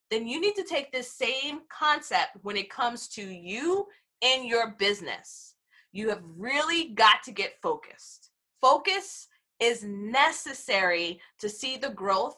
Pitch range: 215-305 Hz